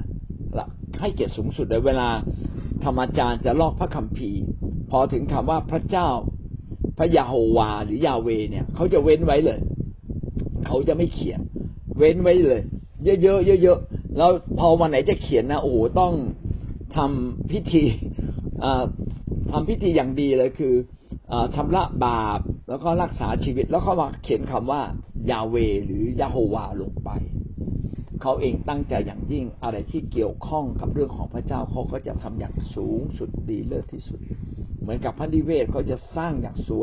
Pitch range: 105-145 Hz